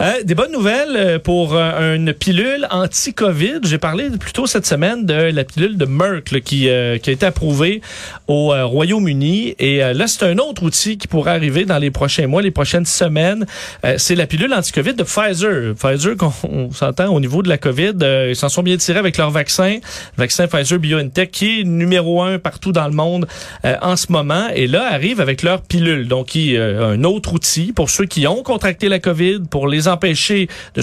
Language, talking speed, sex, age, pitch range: French, 215 wpm, male, 40-59, 145-190 Hz